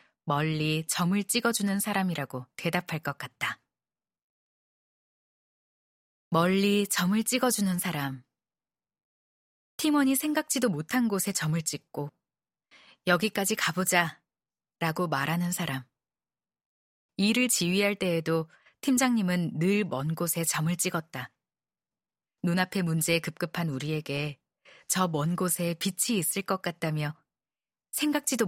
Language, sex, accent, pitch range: Korean, female, native, 155-205 Hz